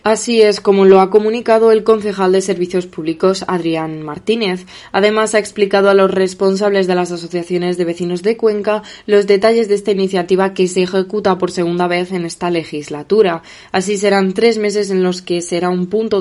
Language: Spanish